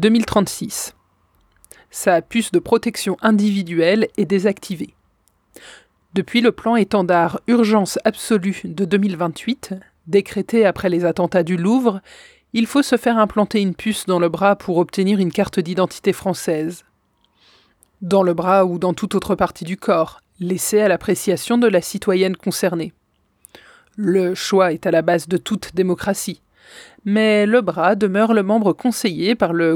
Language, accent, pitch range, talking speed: French, French, 180-215 Hz, 145 wpm